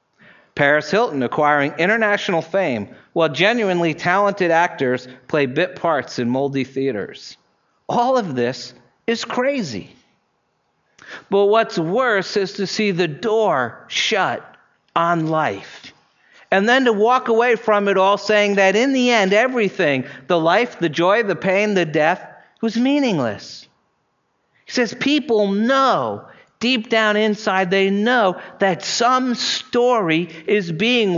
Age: 50-69